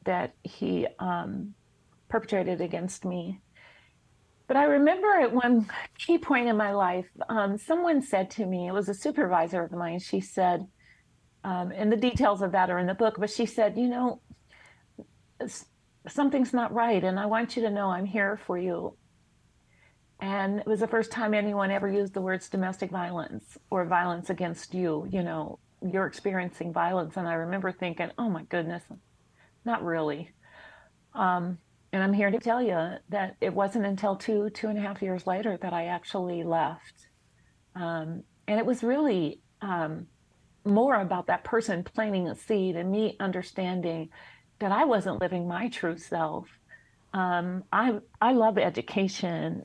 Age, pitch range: 40-59, 180-220 Hz